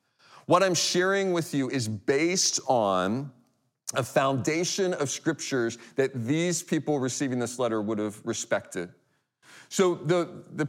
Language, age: English, 40-59